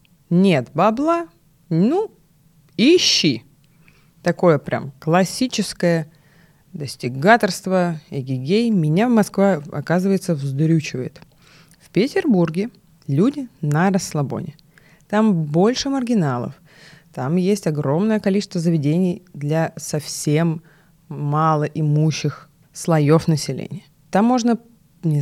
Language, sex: Russian, female